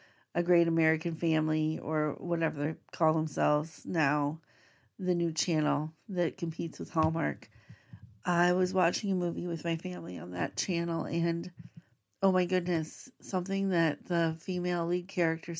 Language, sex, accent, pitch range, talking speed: English, female, American, 150-180 Hz, 145 wpm